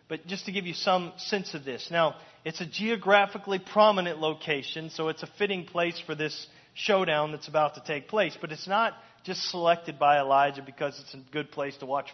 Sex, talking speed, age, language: male, 210 wpm, 40-59, English